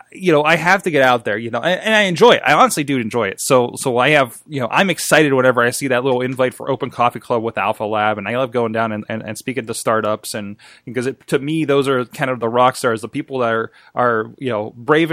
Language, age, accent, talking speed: English, 20-39, American, 280 wpm